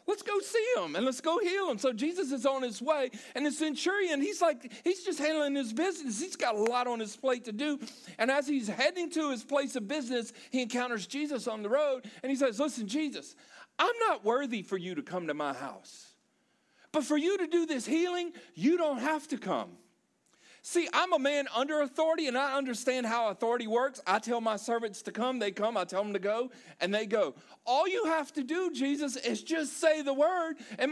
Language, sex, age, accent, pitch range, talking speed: English, male, 40-59, American, 250-330 Hz, 225 wpm